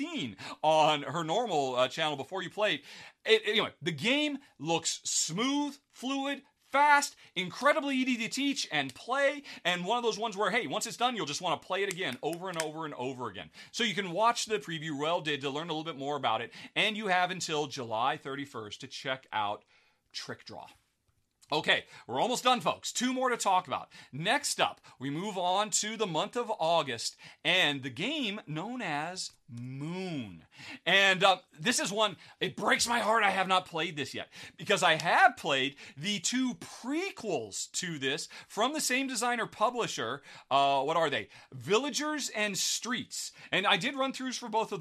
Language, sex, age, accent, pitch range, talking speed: English, male, 40-59, American, 155-245 Hz, 190 wpm